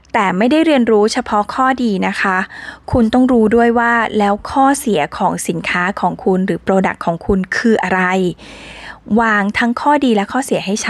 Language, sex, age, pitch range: Thai, female, 20-39, 190-250 Hz